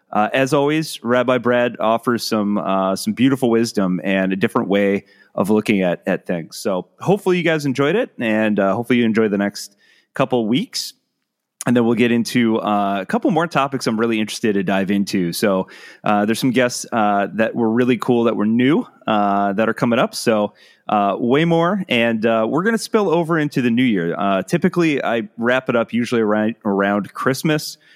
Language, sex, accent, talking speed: English, male, American, 200 wpm